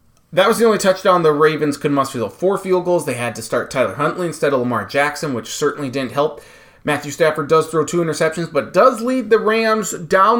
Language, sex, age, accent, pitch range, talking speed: English, male, 30-49, American, 140-195 Hz, 225 wpm